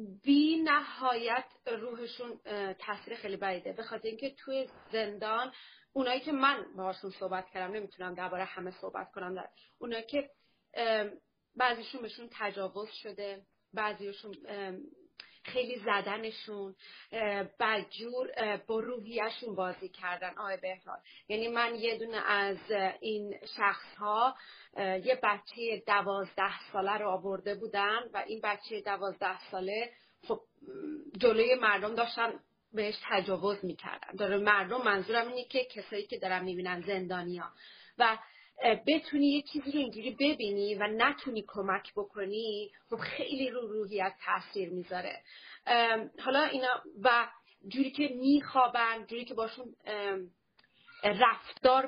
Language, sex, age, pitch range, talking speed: Persian, female, 30-49, 200-260 Hz, 115 wpm